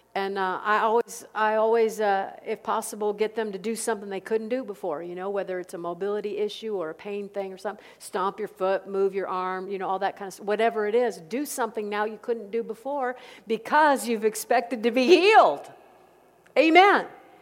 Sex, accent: female, American